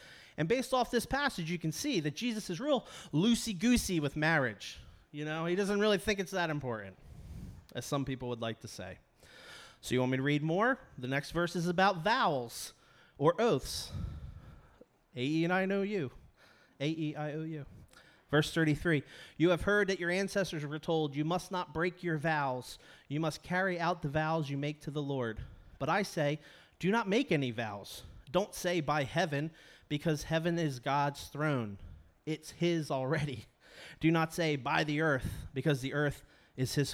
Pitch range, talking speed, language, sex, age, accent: 125-165 Hz, 170 wpm, English, male, 30-49, American